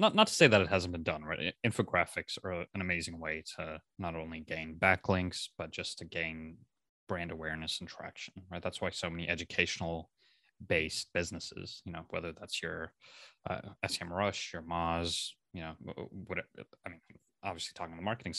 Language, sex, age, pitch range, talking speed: English, male, 20-39, 80-100 Hz, 185 wpm